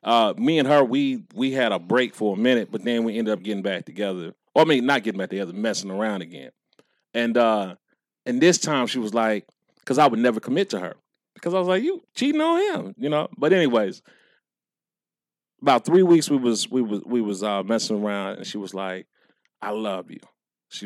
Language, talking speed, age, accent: English, 225 wpm, 30-49, American